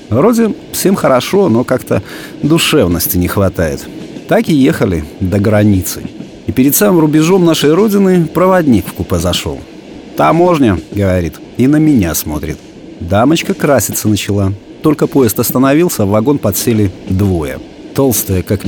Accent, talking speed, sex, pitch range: native, 130 wpm, male, 100-150 Hz